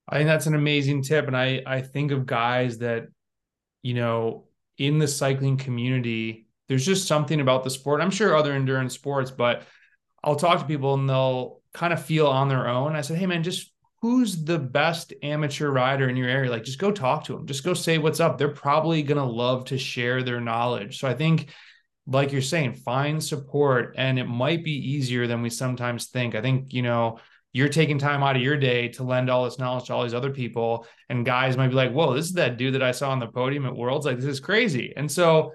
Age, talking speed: 20-39, 230 wpm